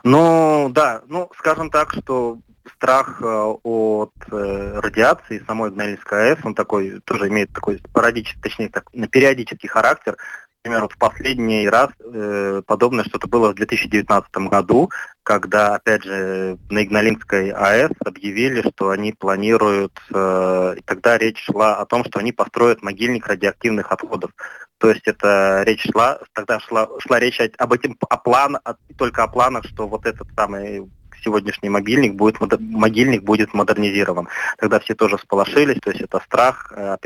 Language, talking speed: Russian, 150 wpm